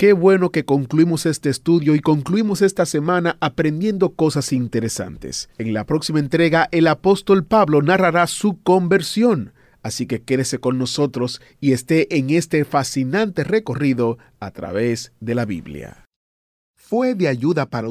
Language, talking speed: Spanish, 145 wpm